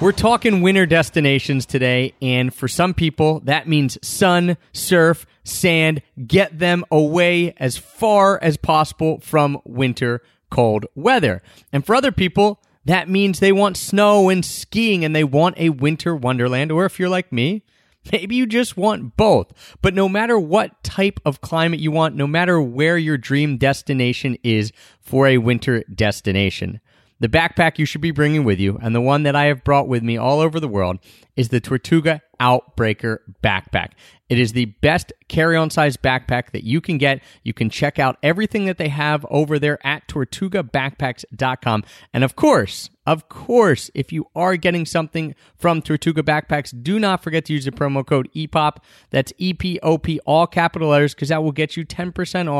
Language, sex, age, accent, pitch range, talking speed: English, male, 30-49, American, 125-170 Hz, 175 wpm